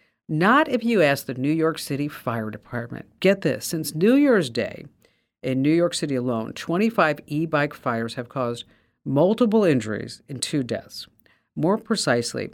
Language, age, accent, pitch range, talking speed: English, 50-69, American, 130-180 Hz, 160 wpm